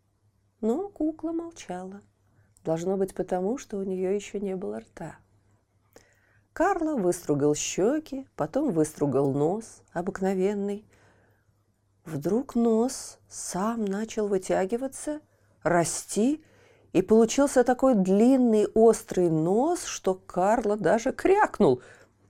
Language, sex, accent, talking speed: Russian, female, native, 95 wpm